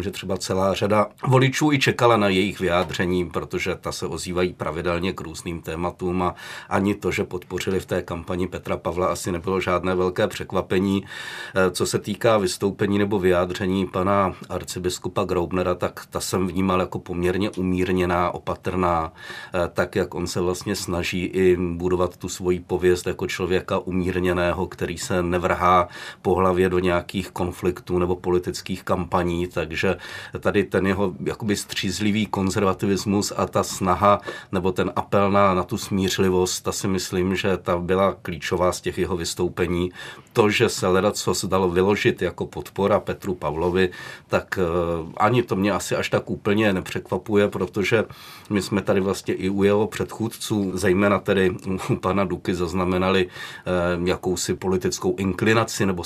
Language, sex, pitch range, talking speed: Czech, male, 90-95 Hz, 150 wpm